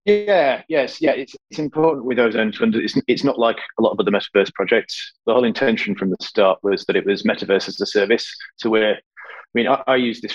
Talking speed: 240 wpm